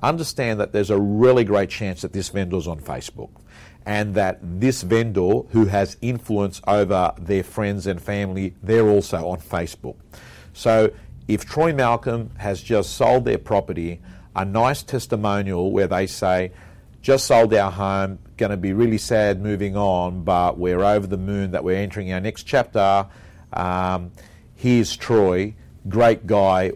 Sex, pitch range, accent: male, 95-120 Hz, Australian